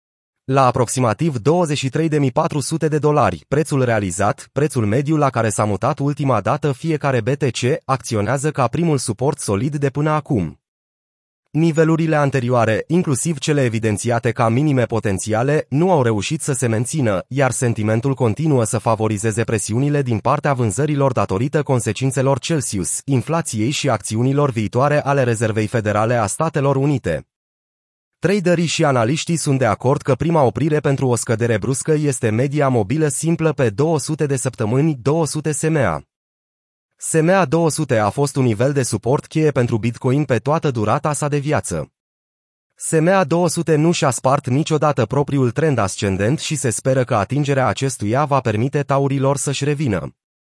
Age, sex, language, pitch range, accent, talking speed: 30-49, male, Romanian, 115-155 Hz, native, 145 wpm